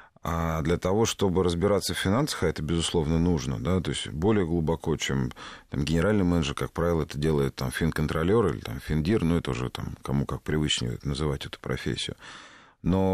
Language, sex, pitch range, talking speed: Russian, male, 75-90 Hz, 175 wpm